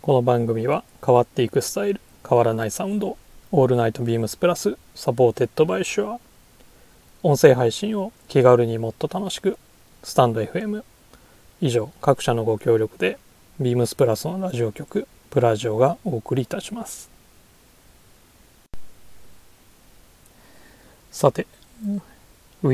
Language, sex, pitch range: Japanese, male, 120-180 Hz